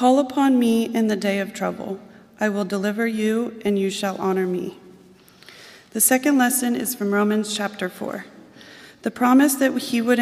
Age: 30-49